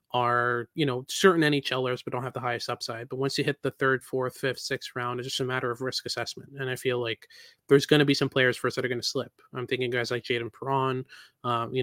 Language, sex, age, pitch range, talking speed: English, male, 20-39, 125-140 Hz, 265 wpm